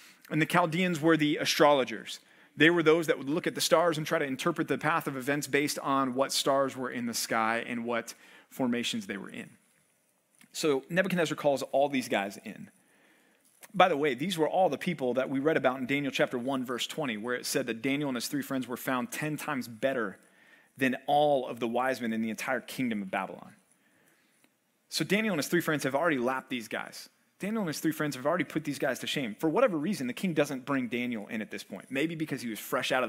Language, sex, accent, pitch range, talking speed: English, male, American, 135-200 Hz, 235 wpm